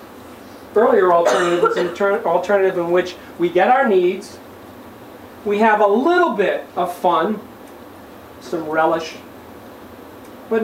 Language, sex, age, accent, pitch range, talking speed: English, male, 40-59, American, 170-230 Hz, 105 wpm